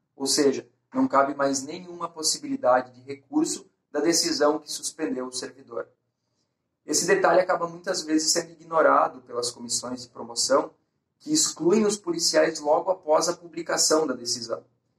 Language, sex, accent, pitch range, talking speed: Portuguese, male, Brazilian, 140-175 Hz, 145 wpm